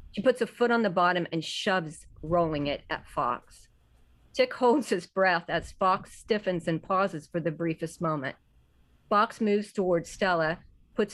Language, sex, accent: English, female, American